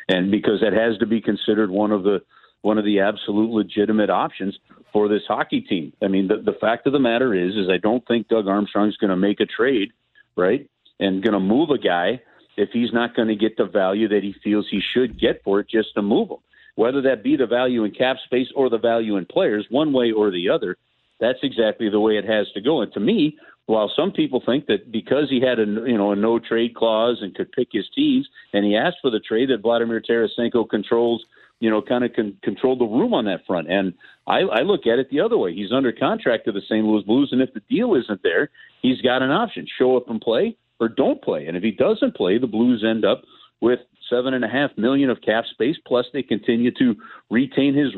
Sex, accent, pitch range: male, American, 105-125 Hz